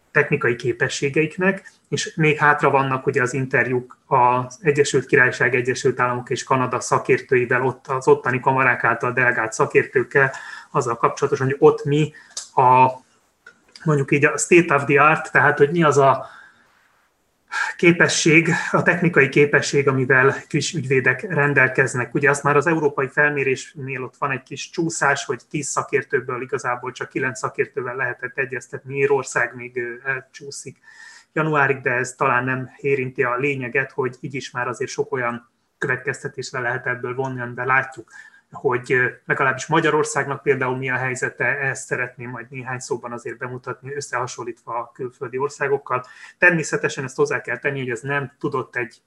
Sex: male